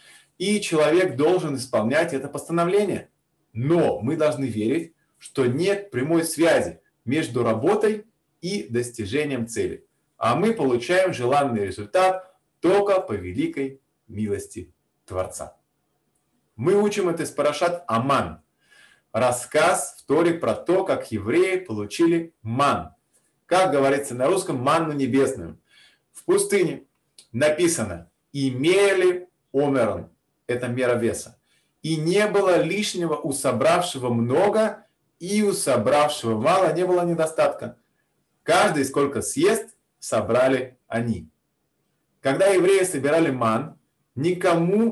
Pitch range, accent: 135-185 Hz, native